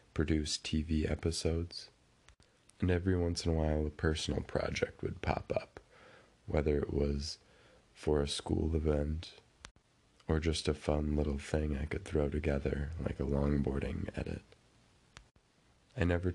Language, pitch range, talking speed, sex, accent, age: English, 75-90 Hz, 140 wpm, male, American, 30-49